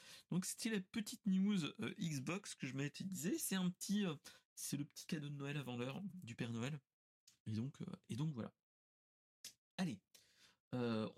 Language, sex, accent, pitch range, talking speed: French, male, French, 120-185 Hz, 175 wpm